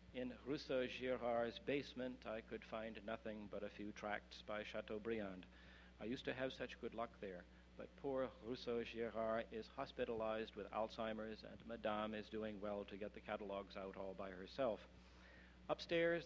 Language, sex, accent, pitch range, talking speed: English, male, American, 100-125 Hz, 155 wpm